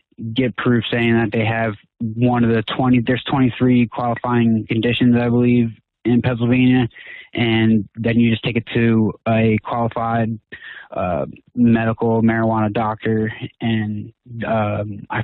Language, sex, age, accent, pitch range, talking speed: English, male, 20-39, American, 110-120 Hz, 135 wpm